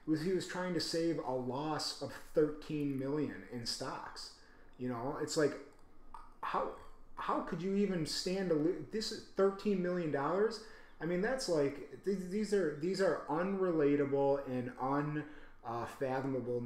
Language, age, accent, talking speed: English, 30-49, American, 145 wpm